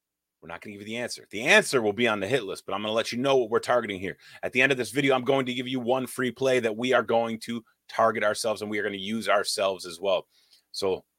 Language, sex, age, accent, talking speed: English, male, 30-49, American, 310 wpm